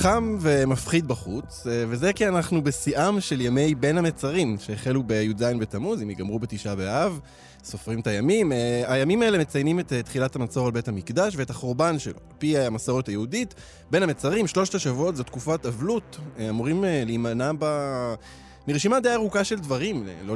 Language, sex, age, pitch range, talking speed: Hebrew, male, 20-39, 115-175 Hz, 155 wpm